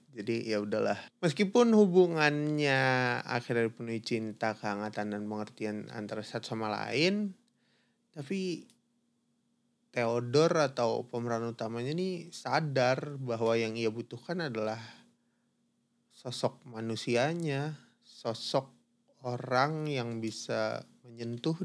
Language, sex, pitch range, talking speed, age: Indonesian, male, 115-150 Hz, 90 wpm, 20-39